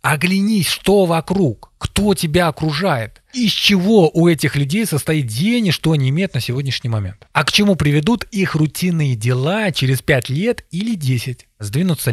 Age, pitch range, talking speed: 20-39, 120-160 Hz, 165 wpm